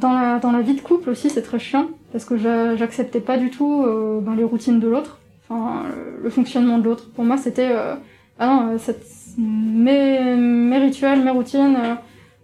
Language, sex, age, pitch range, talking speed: French, female, 20-39, 235-275 Hz, 210 wpm